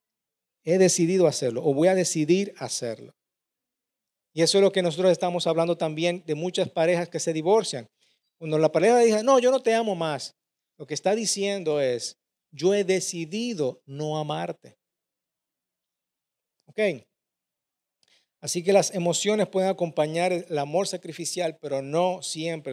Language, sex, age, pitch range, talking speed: Spanish, male, 50-69, 135-175 Hz, 150 wpm